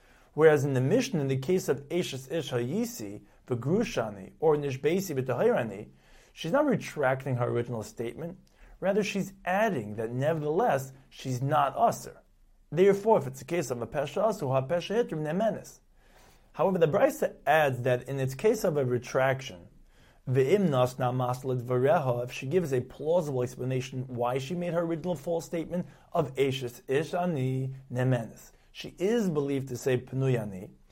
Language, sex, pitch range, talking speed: English, male, 125-180 Hz, 150 wpm